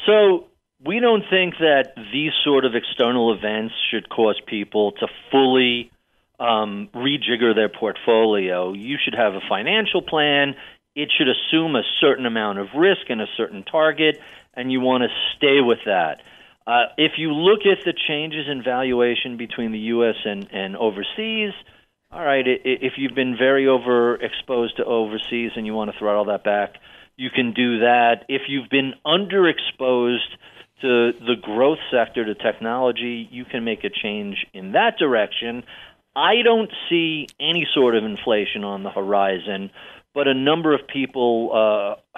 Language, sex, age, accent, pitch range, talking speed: English, male, 40-59, American, 115-145 Hz, 160 wpm